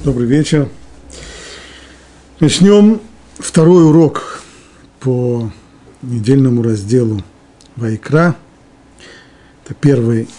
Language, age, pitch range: Russian, 50-69, 110-145 Hz